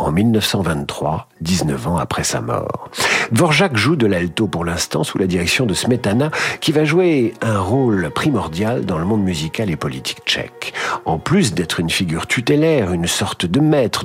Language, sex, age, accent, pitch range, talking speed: French, male, 50-69, French, 85-125 Hz, 175 wpm